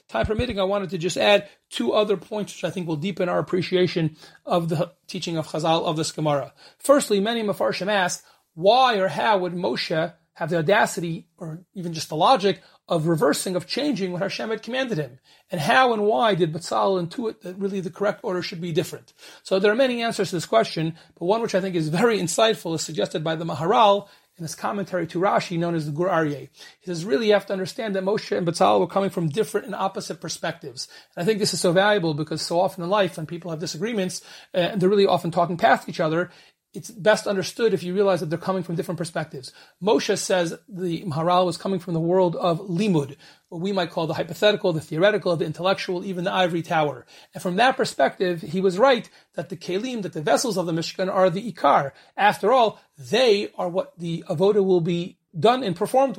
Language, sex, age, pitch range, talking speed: English, male, 30-49, 170-200 Hz, 220 wpm